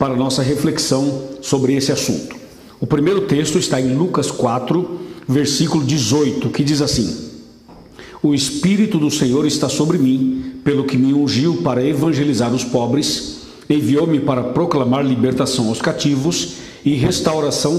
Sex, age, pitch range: male, 60-79, 130-160 Hz